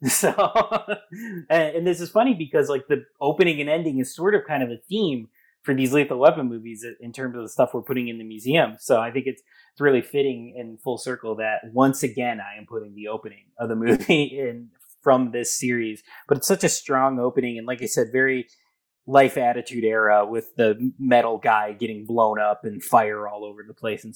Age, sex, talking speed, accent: 20-39, male, 210 wpm, American